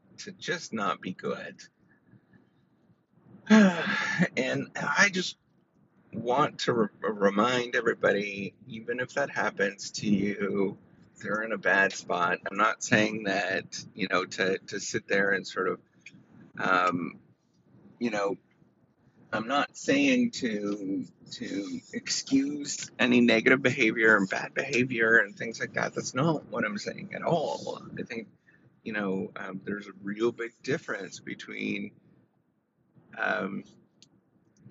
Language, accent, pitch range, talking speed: English, American, 100-130 Hz, 130 wpm